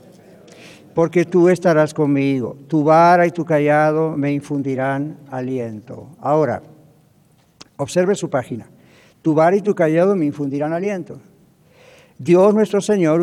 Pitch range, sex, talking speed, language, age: 135-165 Hz, male, 120 wpm, English, 60-79